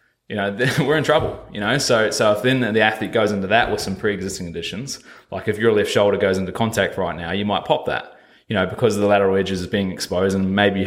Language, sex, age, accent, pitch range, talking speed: English, male, 20-39, Australian, 95-110 Hz, 265 wpm